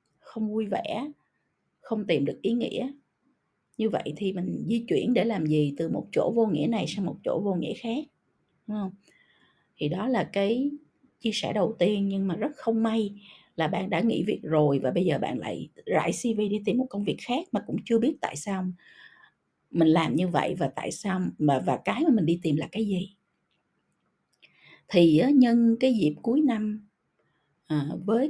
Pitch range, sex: 175-240 Hz, female